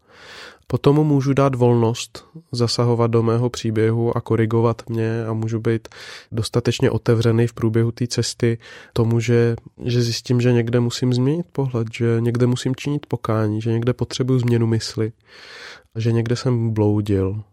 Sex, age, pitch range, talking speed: male, 20-39, 115-130 Hz, 155 wpm